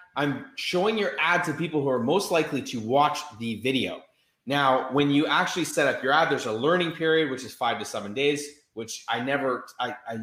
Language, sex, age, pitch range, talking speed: English, male, 20-39, 125-155 Hz, 215 wpm